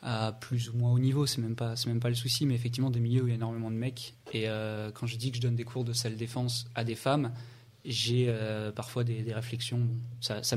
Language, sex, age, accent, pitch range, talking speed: French, male, 20-39, French, 120-130 Hz, 280 wpm